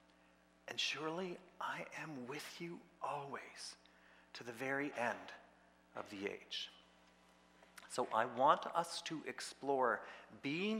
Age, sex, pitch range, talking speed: 40-59, male, 105-170 Hz, 115 wpm